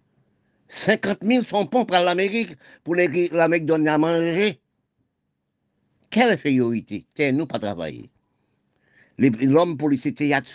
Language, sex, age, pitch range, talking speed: French, male, 50-69, 135-195 Hz, 125 wpm